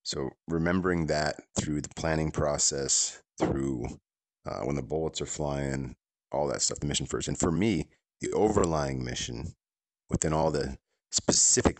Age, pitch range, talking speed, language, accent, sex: 30-49, 70-80 Hz, 155 wpm, English, American, male